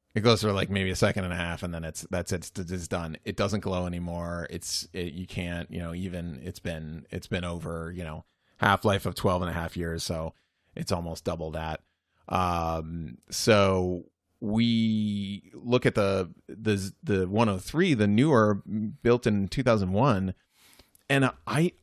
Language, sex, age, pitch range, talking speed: English, male, 30-49, 90-115 Hz, 170 wpm